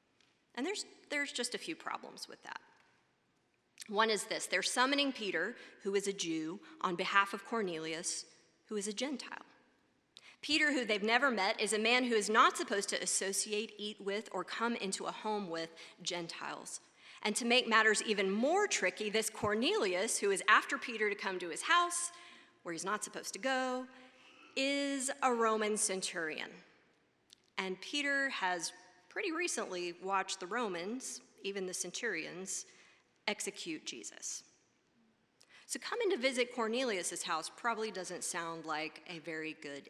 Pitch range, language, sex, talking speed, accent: 190-265 Hz, English, female, 155 wpm, American